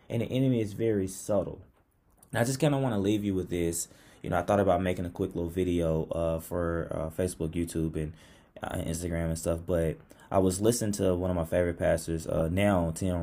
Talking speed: 225 wpm